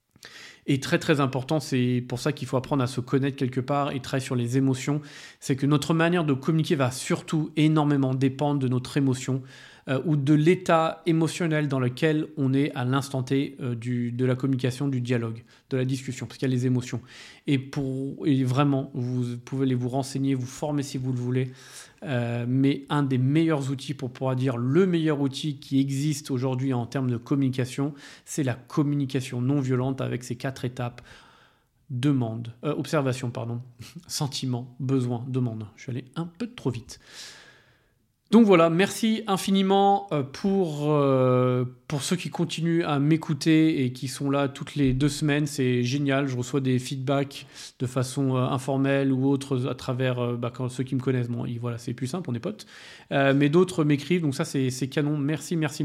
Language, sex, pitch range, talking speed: French, male, 130-155 Hz, 190 wpm